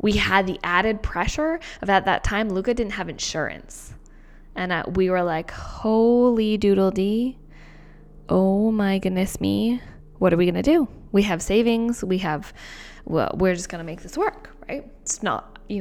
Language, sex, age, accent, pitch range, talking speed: English, female, 10-29, American, 180-210 Hz, 180 wpm